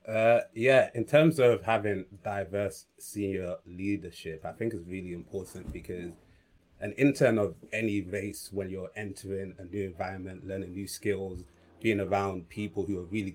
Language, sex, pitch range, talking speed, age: English, male, 90-105 Hz, 155 wpm, 30-49